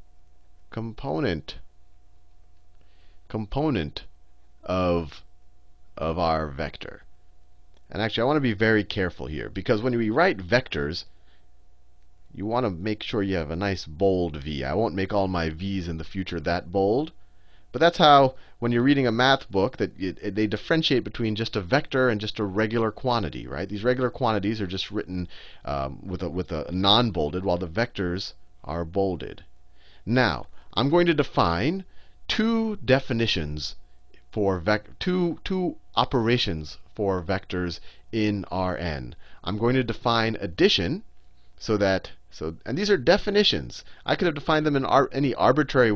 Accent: American